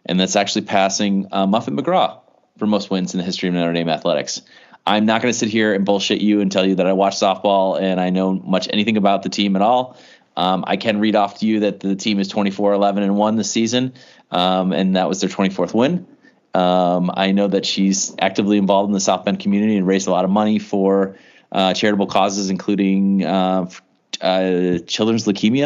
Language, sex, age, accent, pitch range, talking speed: English, male, 30-49, American, 95-105 Hz, 215 wpm